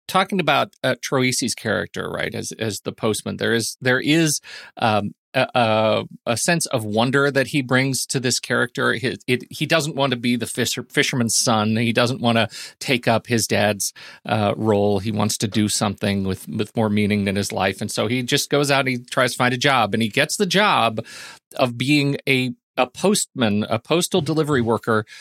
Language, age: English, 40-59